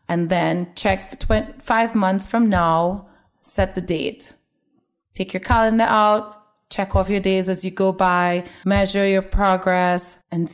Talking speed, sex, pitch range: 150 wpm, female, 170-205 Hz